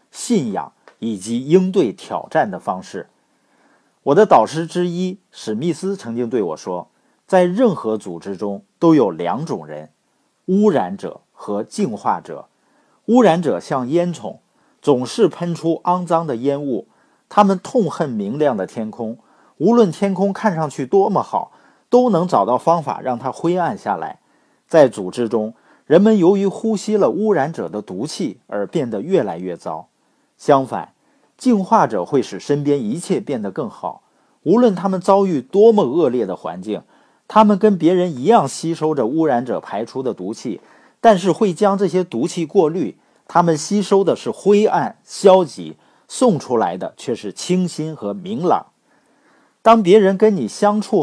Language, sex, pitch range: Chinese, male, 145-205 Hz